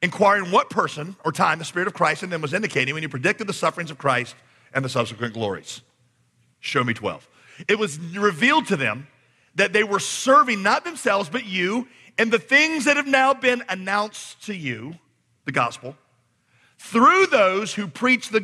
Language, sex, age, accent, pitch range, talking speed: English, male, 40-59, American, 120-185 Hz, 185 wpm